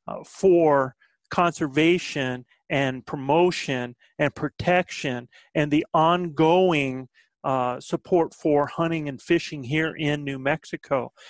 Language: English